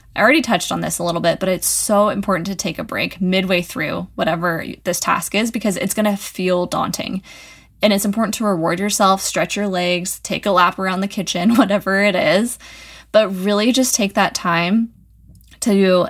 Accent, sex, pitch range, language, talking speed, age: American, female, 175-210 Hz, English, 200 wpm, 20-39